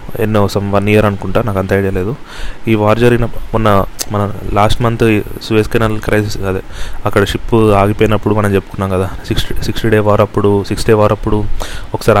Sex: male